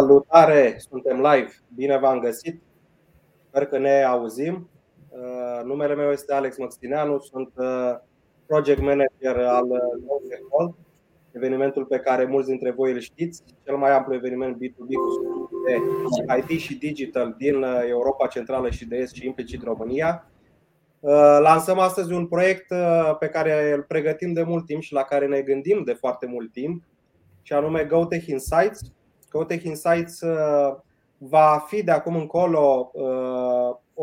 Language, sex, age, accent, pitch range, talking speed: Romanian, male, 20-39, native, 135-170 Hz, 140 wpm